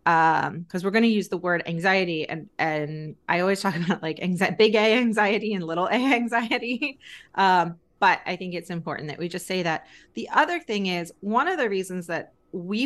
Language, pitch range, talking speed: English, 185-230 Hz, 205 wpm